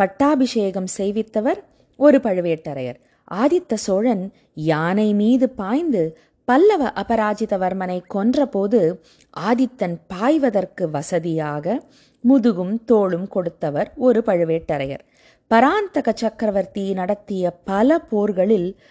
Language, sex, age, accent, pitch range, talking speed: Tamil, female, 20-39, native, 180-245 Hz, 80 wpm